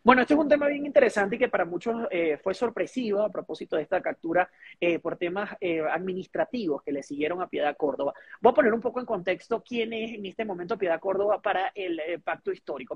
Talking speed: 225 wpm